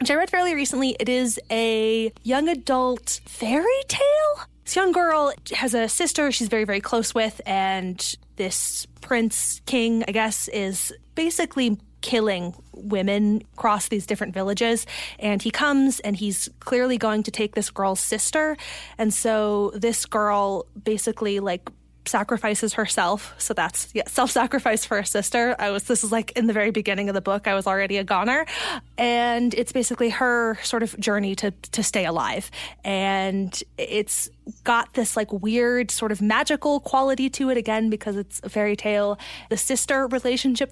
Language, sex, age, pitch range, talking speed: English, female, 20-39, 200-250 Hz, 165 wpm